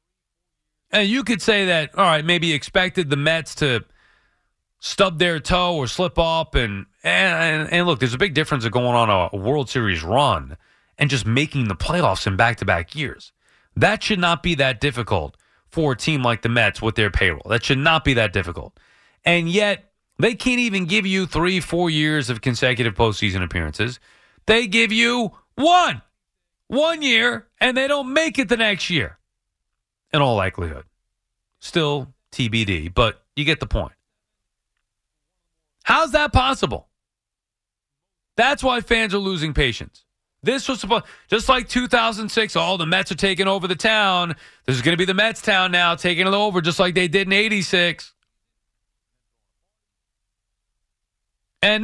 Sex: male